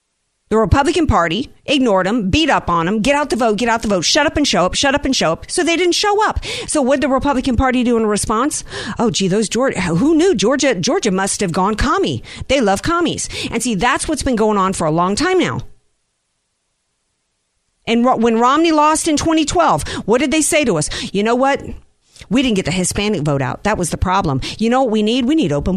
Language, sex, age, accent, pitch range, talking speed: English, female, 50-69, American, 160-245 Hz, 240 wpm